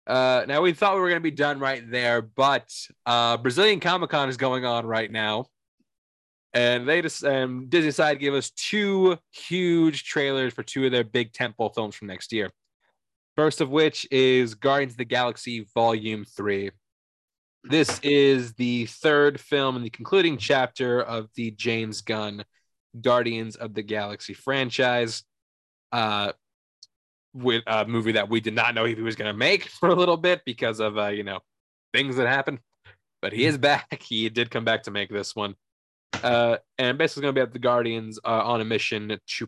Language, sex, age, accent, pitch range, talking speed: English, male, 20-39, American, 110-135 Hz, 185 wpm